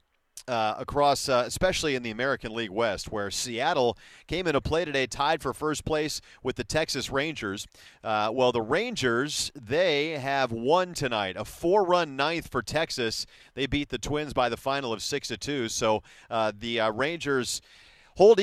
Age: 40-59